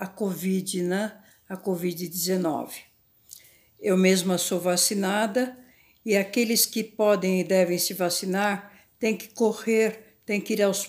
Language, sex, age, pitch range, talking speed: Portuguese, female, 60-79, 190-235 Hz, 130 wpm